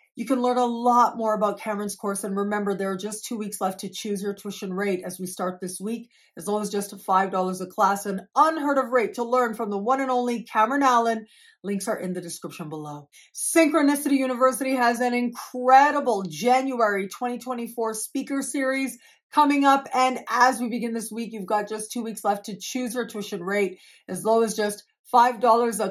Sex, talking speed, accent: female, 200 wpm, American